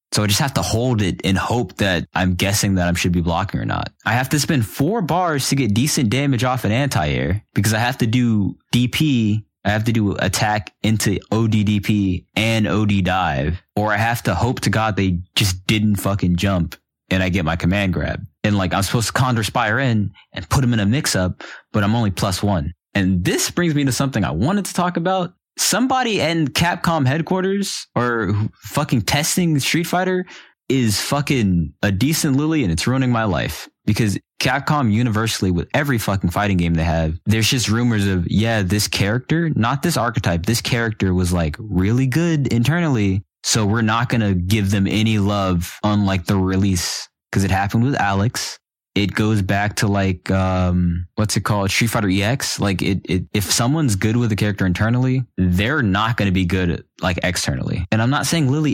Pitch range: 95-130 Hz